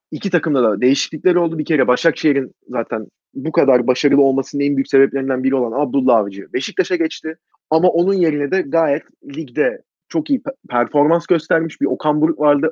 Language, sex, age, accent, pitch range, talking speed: Turkish, male, 30-49, native, 135-175 Hz, 170 wpm